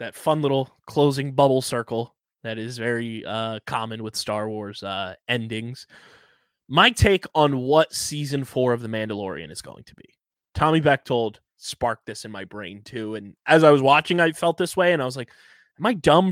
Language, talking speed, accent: English, 195 wpm, American